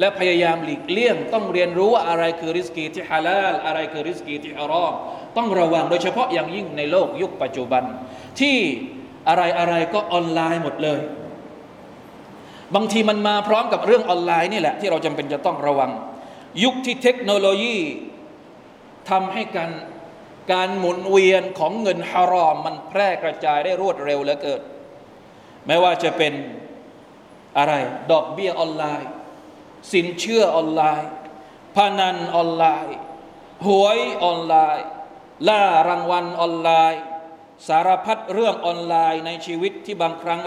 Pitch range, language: 160-200 Hz, Thai